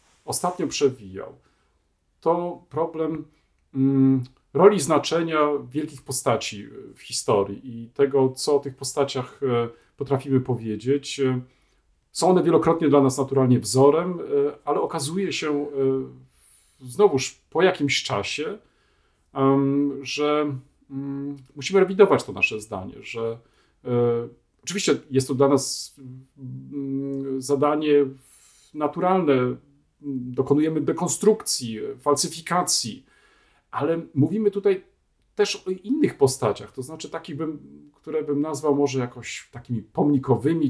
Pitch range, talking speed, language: 130-165 Hz, 110 wpm, Polish